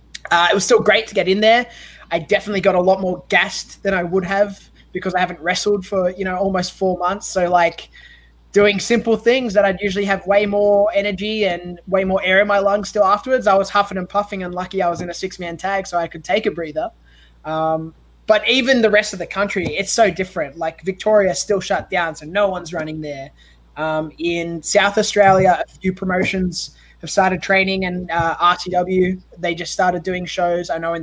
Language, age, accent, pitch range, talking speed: English, 20-39, Australian, 175-205 Hz, 215 wpm